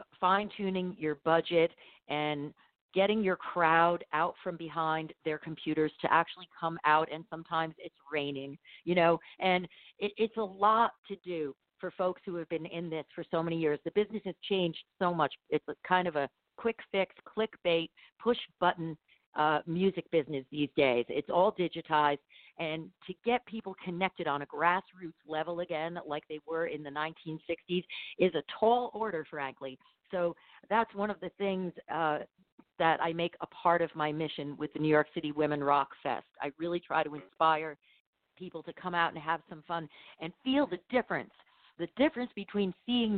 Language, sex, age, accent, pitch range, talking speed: English, female, 50-69, American, 155-190 Hz, 175 wpm